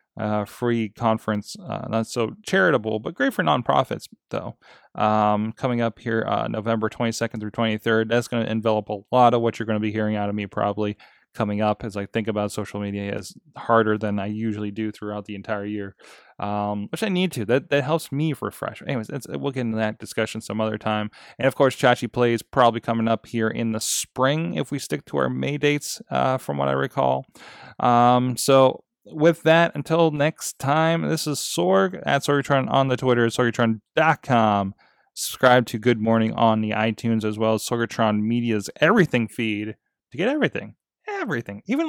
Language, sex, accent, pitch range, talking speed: English, male, American, 105-130 Hz, 195 wpm